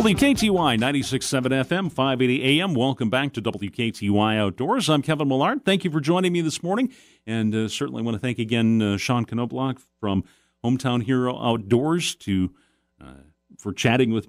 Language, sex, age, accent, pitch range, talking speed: English, male, 40-59, American, 95-130 Hz, 160 wpm